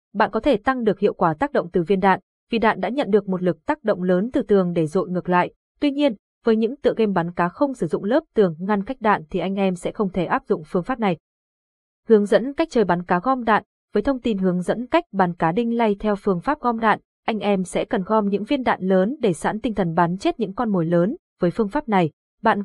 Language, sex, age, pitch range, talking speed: Vietnamese, female, 20-39, 185-235 Hz, 270 wpm